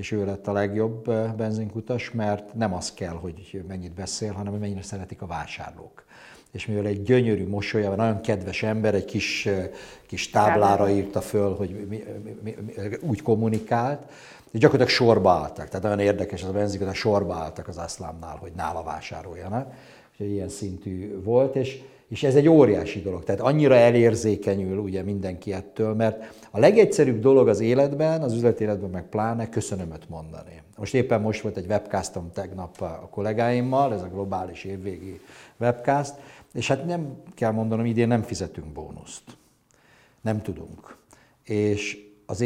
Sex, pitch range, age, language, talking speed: male, 95-115 Hz, 50-69, Hungarian, 160 wpm